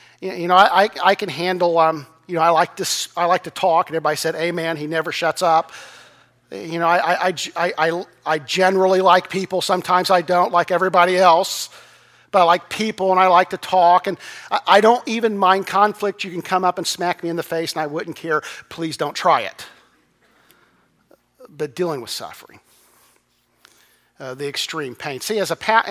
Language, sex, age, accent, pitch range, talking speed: English, male, 50-69, American, 165-195 Hz, 195 wpm